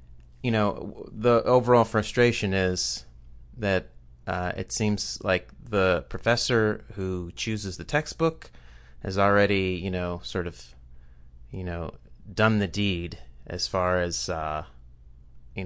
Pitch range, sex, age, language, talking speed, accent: 75-100 Hz, male, 30-49, English, 125 wpm, American